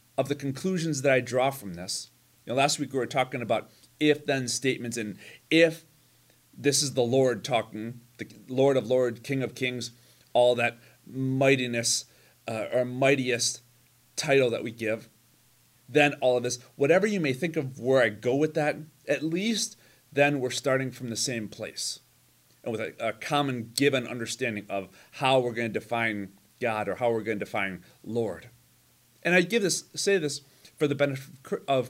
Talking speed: 180 wpm